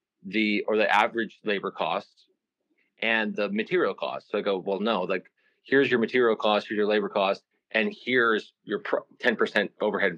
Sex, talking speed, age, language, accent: male, 185 wpm, 30-49, English, American